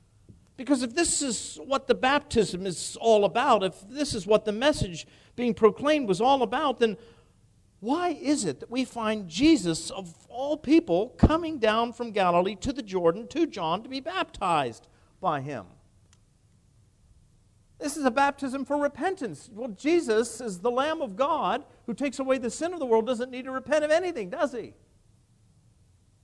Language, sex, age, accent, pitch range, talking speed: English, male, 50-69, American, 170-280 Hz, 170 wpm